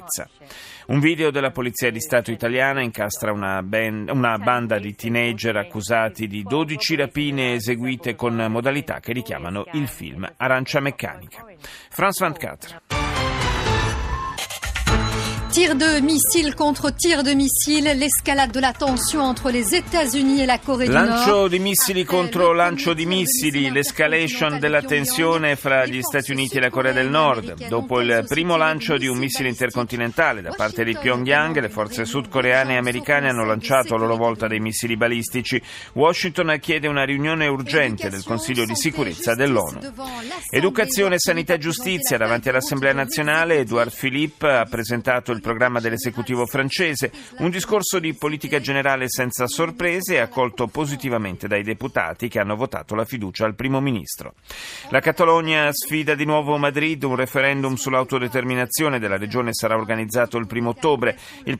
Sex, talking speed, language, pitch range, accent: male, 145 wpm, Italian, 115-155 Hz, native